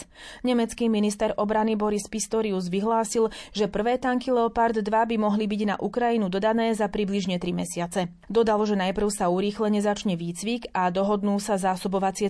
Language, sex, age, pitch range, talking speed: Slovak, female, 30-49, 190-230 Hz, 155 wpm